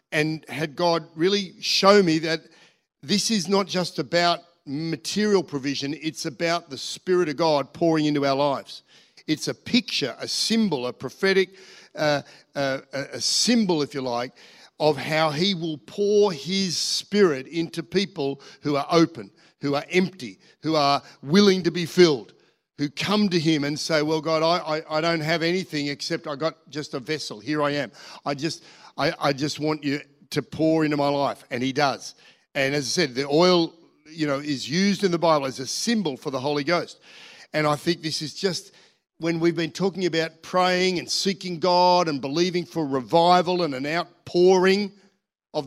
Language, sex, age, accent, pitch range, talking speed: English, male, 50-69, Australian, 150-190 Hz, 185 wpm